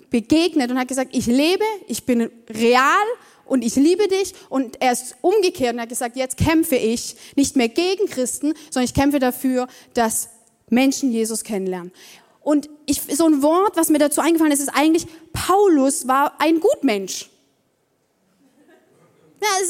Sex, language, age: female, German, 20-39